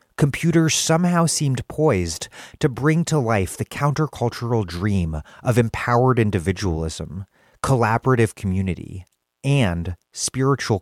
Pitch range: 95-130 Hz